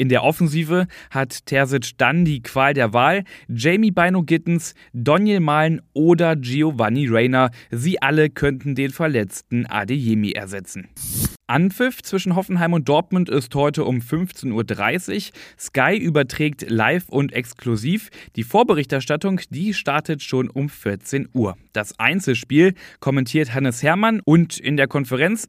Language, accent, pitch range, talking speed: German, German, 120-155 Hz, 135 wpm